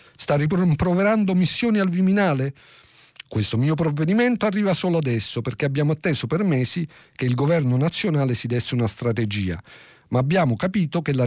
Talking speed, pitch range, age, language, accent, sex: 155 wpm, 105-155 Hz, 50-69, Italian, native, male